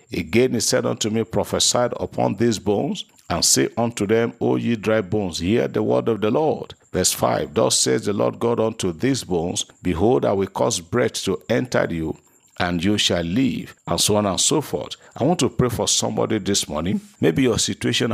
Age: 50-69